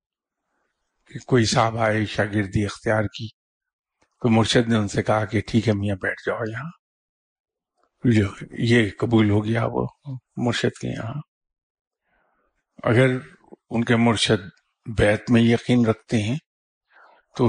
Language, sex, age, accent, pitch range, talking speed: English, male, 50-69, Indian, 105-120 Hz, 135 wpm